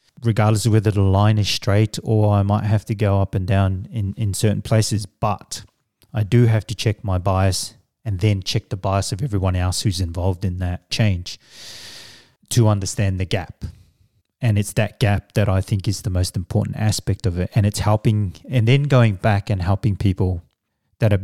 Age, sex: 30-49, male